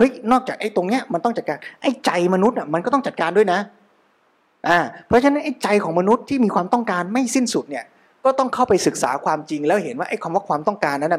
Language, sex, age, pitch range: Thai, male, 20-39, 165-240 Hz